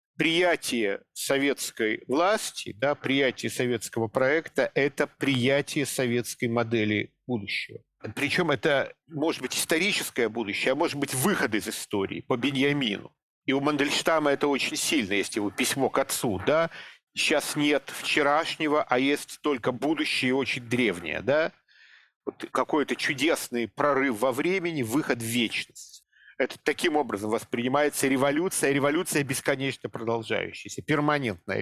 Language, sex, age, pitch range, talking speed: Russian, male, 50-69, 120-150 Hz, 120 wpm